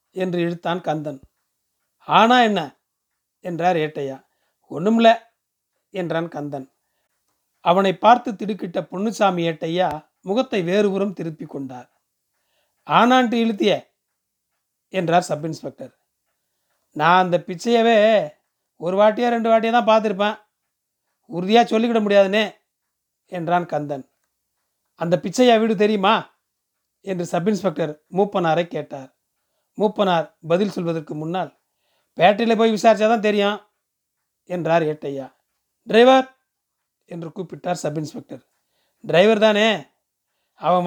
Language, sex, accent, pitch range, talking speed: Tamil, male, native, 165-215 Hz, 95 wpm